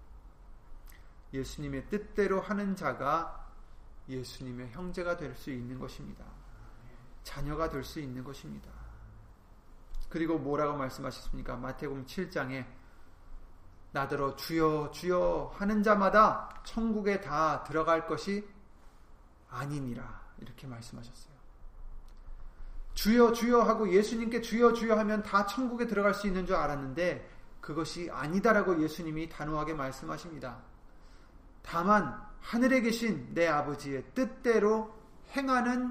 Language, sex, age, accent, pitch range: Korean, male, 30-49, native, 130-215 Hz